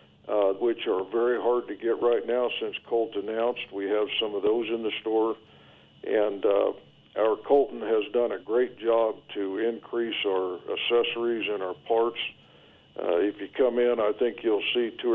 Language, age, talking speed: English, 60-79, 180 wpm